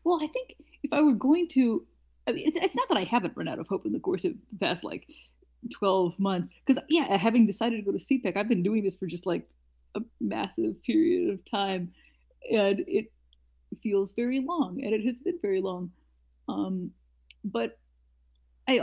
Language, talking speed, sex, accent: English, 200 wpm, female, American